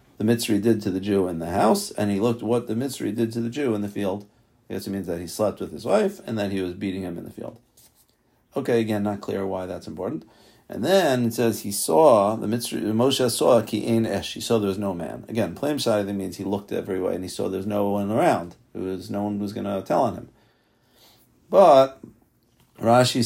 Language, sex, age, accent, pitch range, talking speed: English, male, 50-69, American, 100-115 Hz, 245 wpm